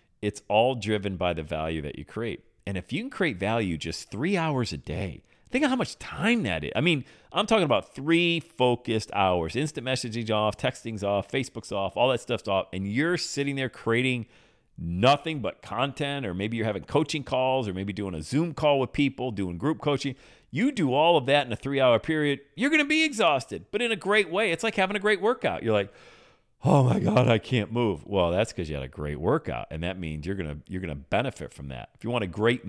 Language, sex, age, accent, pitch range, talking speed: English, male, 40-59, American, 95-145 Hz, 235 wpm